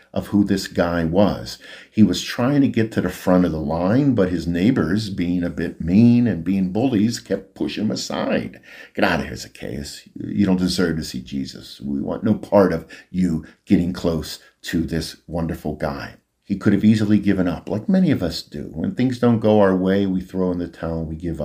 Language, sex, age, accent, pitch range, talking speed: Ukrainian, male, 50-69, American, 85-100 Hz, 220 wpm